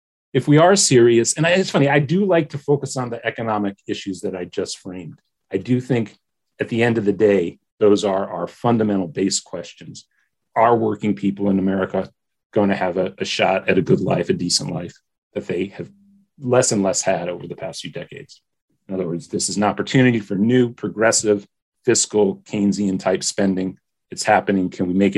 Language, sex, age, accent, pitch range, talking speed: English, male, 40-59, American, 100-130 Hz, 200 wpm